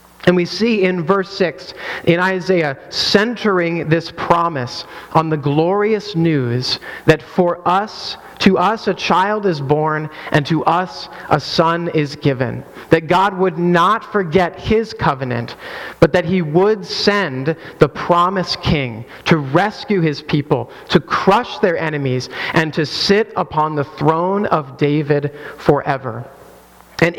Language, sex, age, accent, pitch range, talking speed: English, male, 30-49, American, 155-195 Hz, 140 wpm